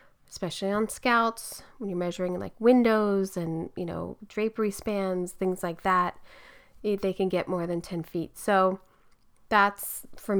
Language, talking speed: English, 150 wpm